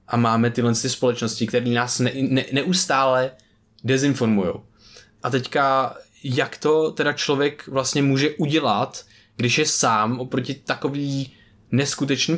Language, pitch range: Czech, 120-145 Hz